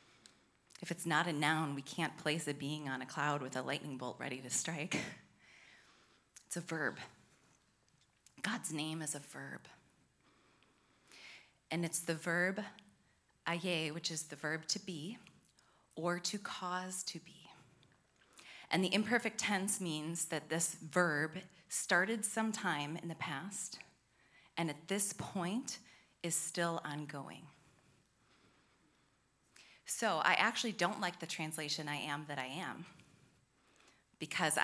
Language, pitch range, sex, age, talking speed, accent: English, 150-185 Hz, female, 20-39, 130 wpm, American